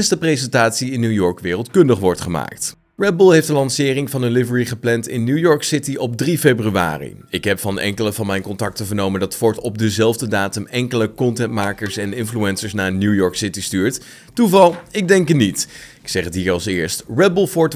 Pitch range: 100-140 Hz